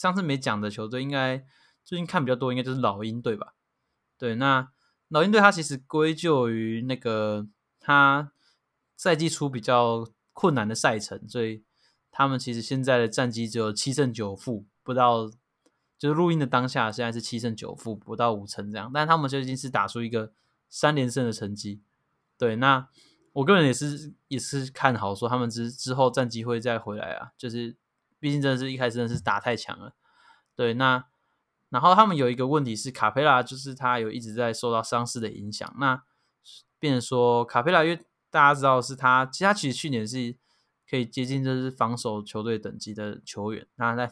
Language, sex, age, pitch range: Chinese, male, 20-39, 115-135 Hz